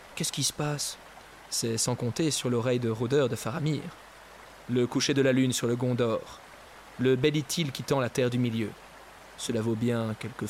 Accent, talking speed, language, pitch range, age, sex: French, 195 wpm, French, 120-150 Hz, 20-39, male